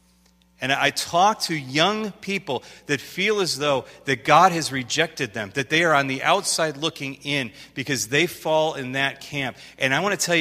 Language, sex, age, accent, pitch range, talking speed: English, male, 40-59, American, 110-160 Hz, 195 wpm